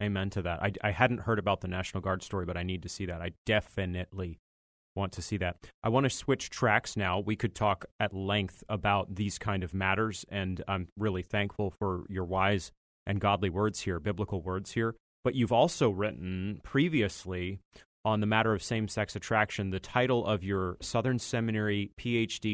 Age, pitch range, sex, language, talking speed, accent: 30-49, 95-115 Hz, male, English, 190 wpm, American